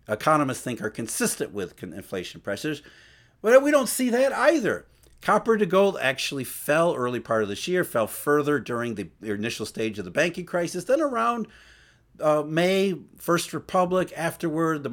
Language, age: English, 50-69